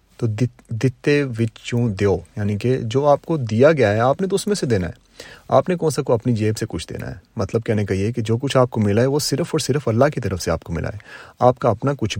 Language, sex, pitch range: Urdu, male, 105-130 Hz